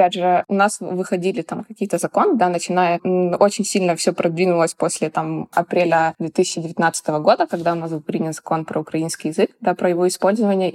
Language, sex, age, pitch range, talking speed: Russian, female, 20-39, 165-190 Hz, 180 wpm